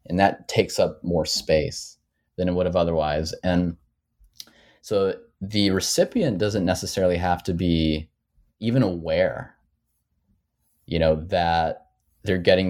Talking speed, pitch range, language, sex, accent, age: 130 wpm, 85-95 Hz, English, male, American, 30-49